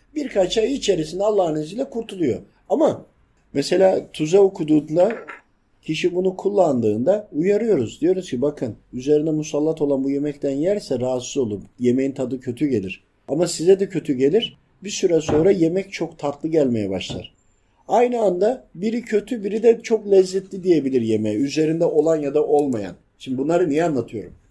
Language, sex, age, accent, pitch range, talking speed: Turkish, male, 50-69, native, 140-195 Hz, 150 wpm